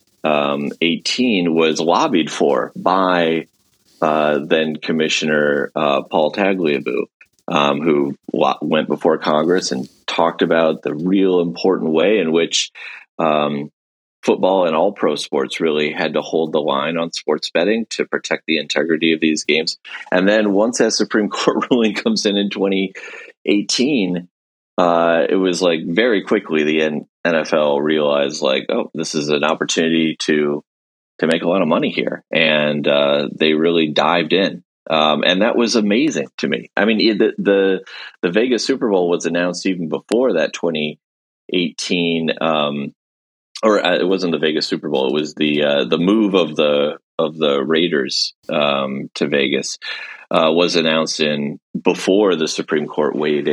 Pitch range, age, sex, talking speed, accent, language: 75-85 Hz, 30-49, male, 155 wpm, American, English